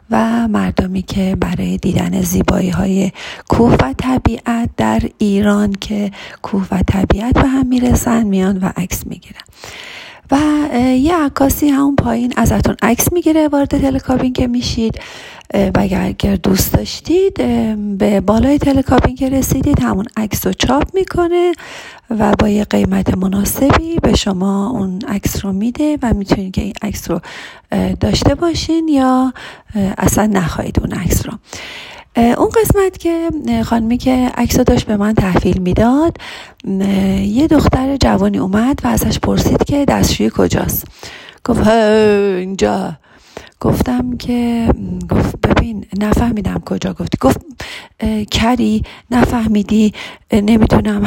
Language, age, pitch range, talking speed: Persian, 40-59, 200-265 Hz, 130 wpm